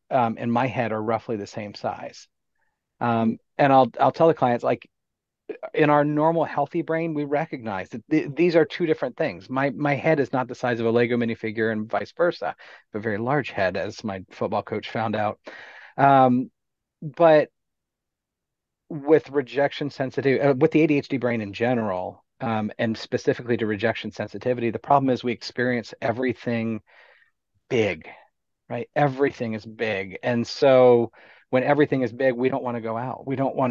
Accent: American